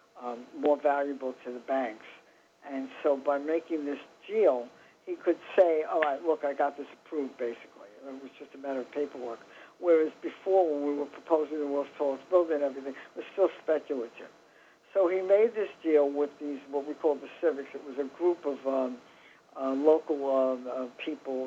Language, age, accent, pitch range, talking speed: English, 60-79, American, 135-160 Hz, 195 wpm